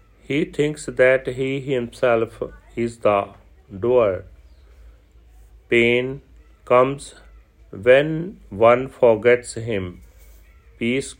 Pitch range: 105-130 Hz